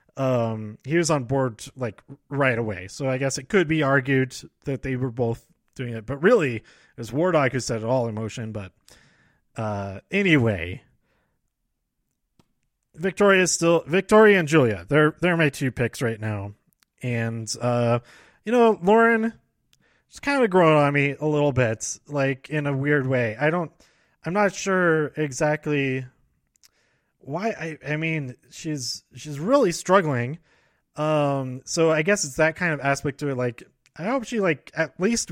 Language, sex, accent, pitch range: English, male, American, 125-165 Hz